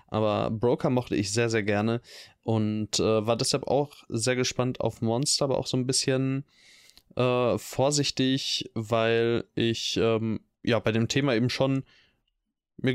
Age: 20-39